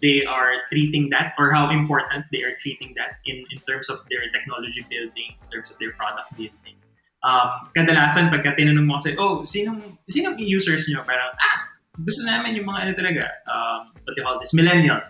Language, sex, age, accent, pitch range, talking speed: Filipino, male, 20-39, native, 135-170 Hz, 195 wpm